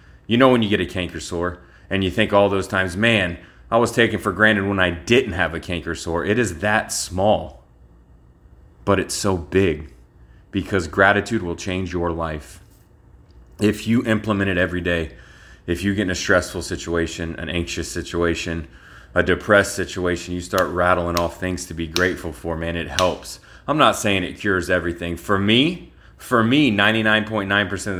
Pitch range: 85-105 Hz